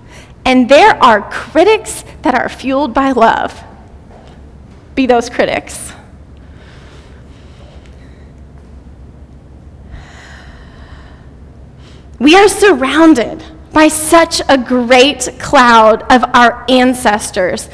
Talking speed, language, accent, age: 80 wpm, English, American, 30-49